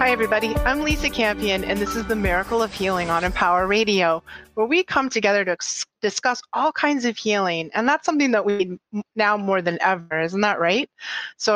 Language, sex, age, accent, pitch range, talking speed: English, female, 30-49, American, 185-220 Hz, 200 wpm